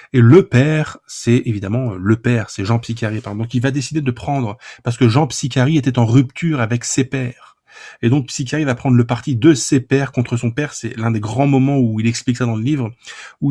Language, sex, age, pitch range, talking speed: French, male, 20-39, 115-135 Hz, 235 wpm